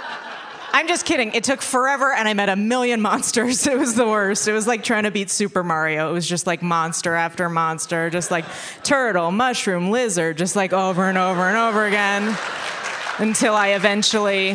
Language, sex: English, female